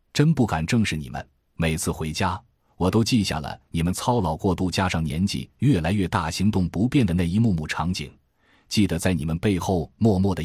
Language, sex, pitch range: Chinese, male, 80-105 Hz